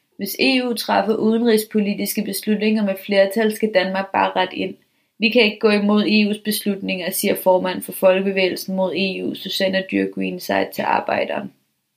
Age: 20-39